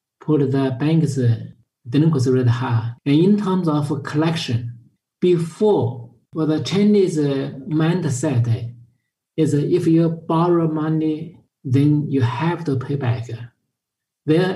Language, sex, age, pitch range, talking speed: English, male, 50-69, 125-160 Hz, 120 wpm